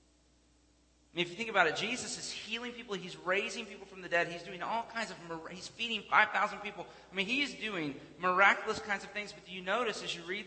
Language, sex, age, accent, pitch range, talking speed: English, male, 40-59, American, 135-175 Hz, 240 wpm